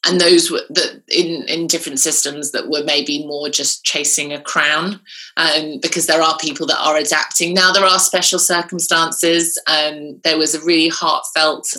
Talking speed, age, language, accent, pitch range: 180 wpm, 20-39, English, British, 155-200 Hz